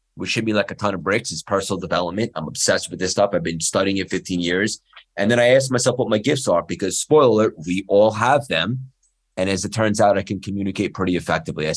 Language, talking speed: English, 250 wpm